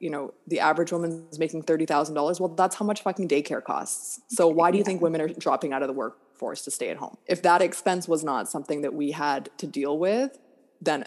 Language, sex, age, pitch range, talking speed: English, female, 20-39, 145-190 Hz, 240 wpm